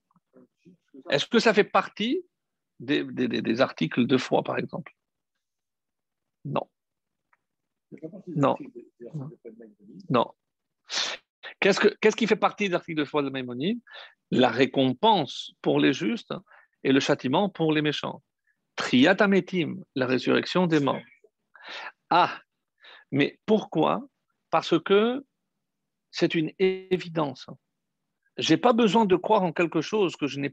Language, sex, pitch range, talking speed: French, male, 145-215 Hz, 125 wpm